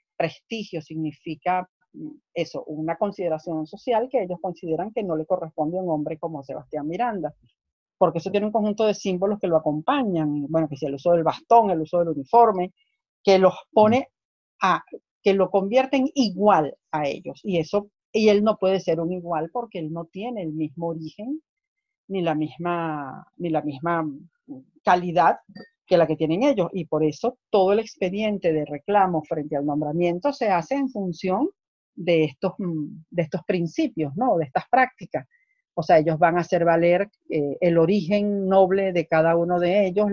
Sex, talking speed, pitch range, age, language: female, 175 wpm, 160-205 Hz, 40-59, Spanish